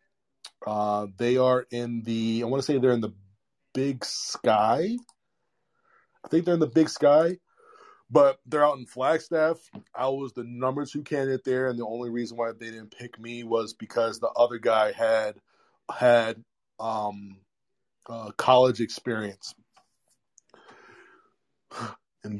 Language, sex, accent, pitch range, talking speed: English, male, American, 110-135 Hz, 145 wpm